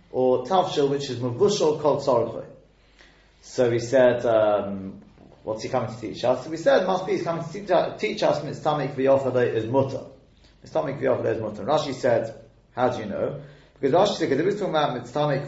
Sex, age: male, 30-49